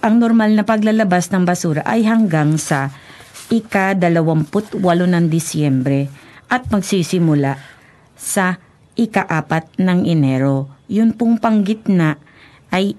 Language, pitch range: Japanese, 155-200 Hz